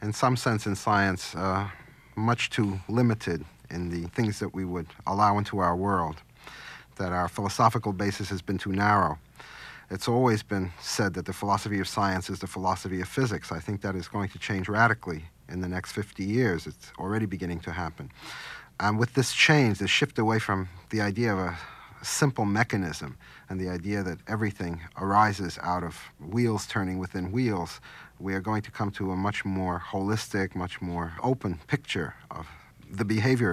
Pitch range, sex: 90-110 Hz, male